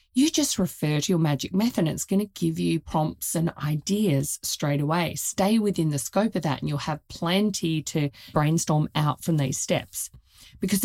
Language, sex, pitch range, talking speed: English, female, 155-205 Hz, 195 wpm